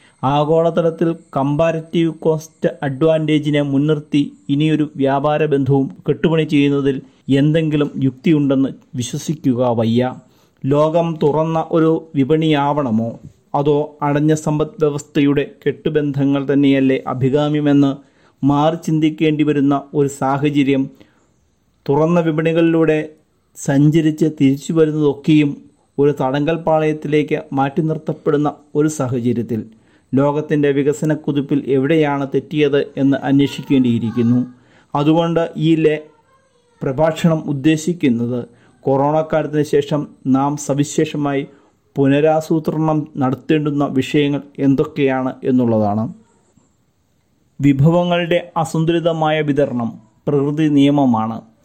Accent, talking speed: native, 75 wpm